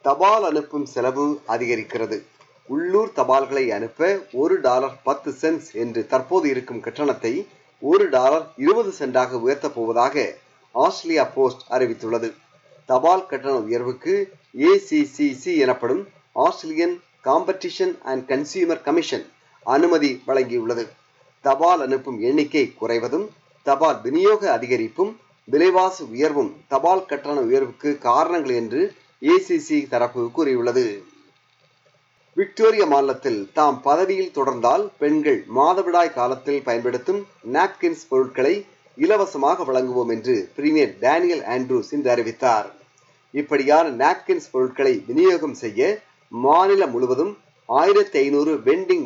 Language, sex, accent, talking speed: Tamil, male, native, 60 wpm